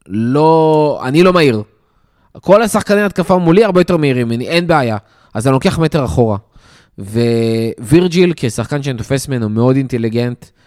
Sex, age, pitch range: male, 20-39, 120-165 Hz